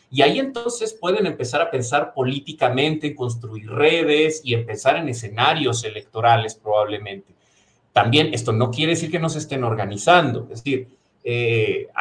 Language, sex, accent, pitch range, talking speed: Spanish, male, Mexican, 115-150 Hz, 145 wpm